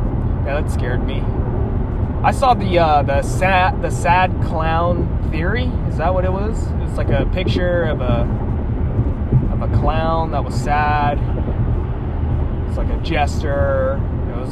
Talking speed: 150 wpm